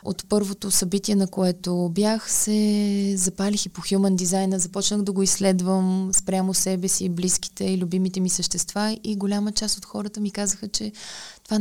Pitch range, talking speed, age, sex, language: 175-205 Hz, 170 wpm, 20-39, female, Bulgarian